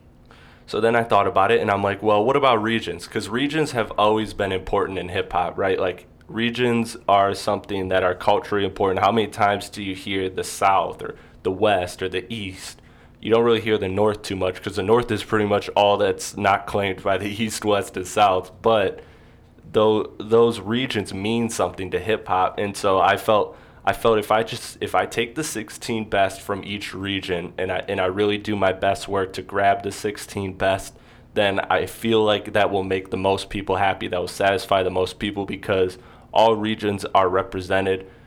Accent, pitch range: American, 95-115 Hz